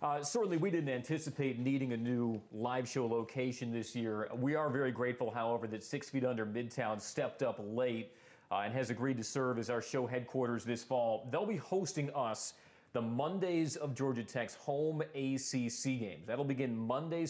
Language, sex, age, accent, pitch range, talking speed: English, male, 40-59, American, 120-135 Hz, 185 wpm